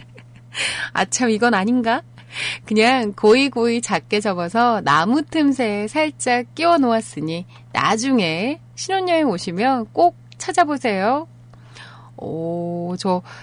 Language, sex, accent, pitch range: Korean, female, native, 170-275 Hz